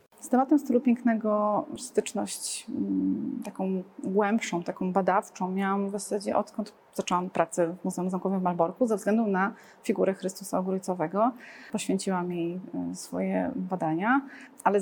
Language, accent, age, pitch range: Polish, native, 30-49, 195-220 Hz